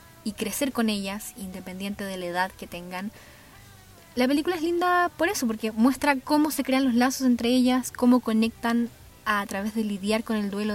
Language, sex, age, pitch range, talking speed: Spanish, female, 20-39, 190-245 Hz, 195 wpm